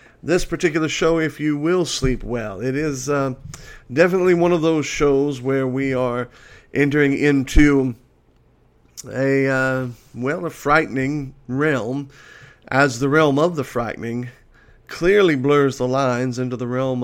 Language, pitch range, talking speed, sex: English, 125-150 Hz, 140 wpm, male